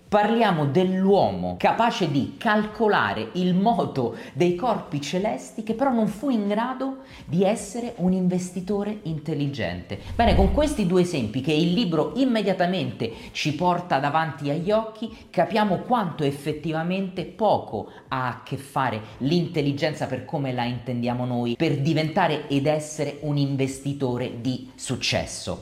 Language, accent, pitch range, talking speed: Italian, native, 135-195 Hz, 135 wpm